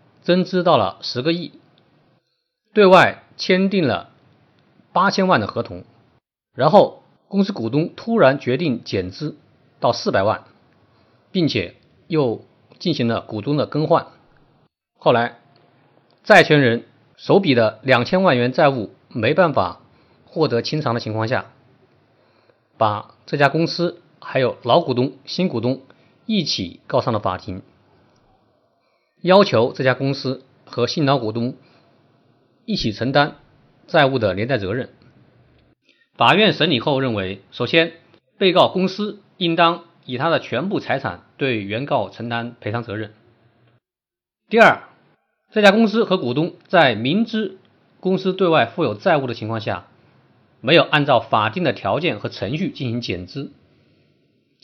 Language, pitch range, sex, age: Chinese, 120-170 Hz, male, 50-69